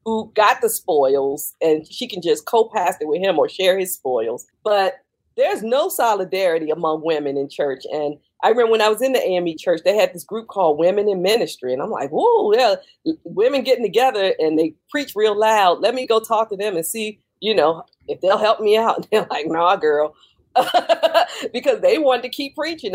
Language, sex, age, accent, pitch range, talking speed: English, female, 40-59, American, 185-285 Hz, 210 wpm